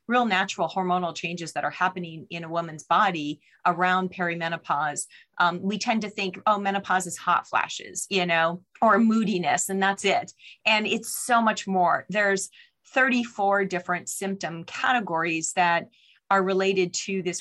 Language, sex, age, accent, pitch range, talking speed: English, female, 30-49, American, 175-210 Hz, 155 wpm